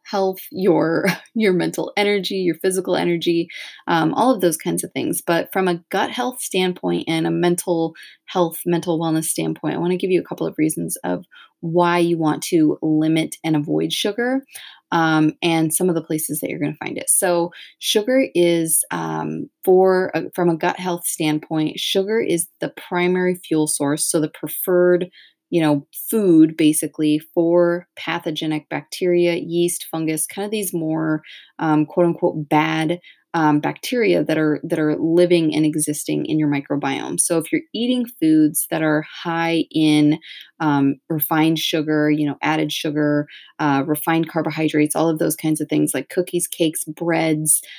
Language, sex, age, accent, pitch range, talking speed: English, female, 20-39, American, 155-180 Hz, 170 wpm